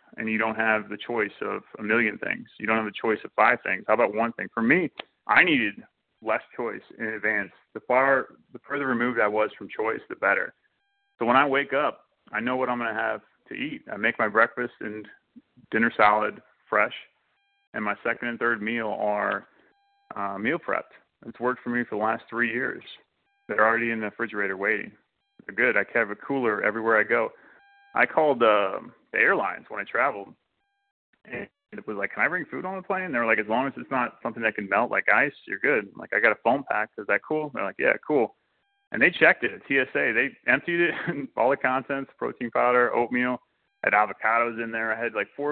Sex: male